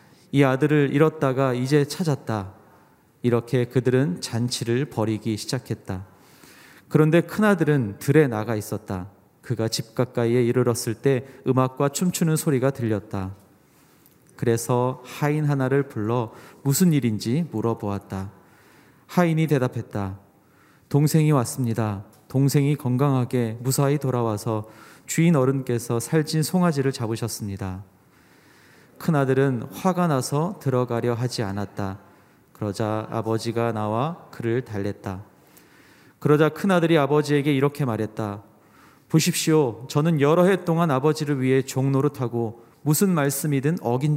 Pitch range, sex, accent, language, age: 110-145 Hz, male, native, Korean, 40-59